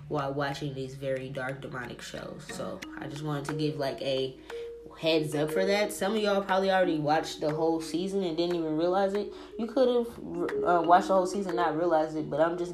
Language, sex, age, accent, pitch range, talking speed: English, female, 10-29, American, 145-175 Hz, 225 wpm